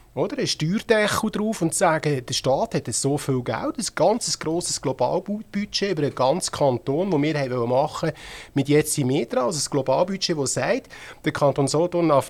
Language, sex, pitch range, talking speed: German, male, 140-180 Hz, 170 wpm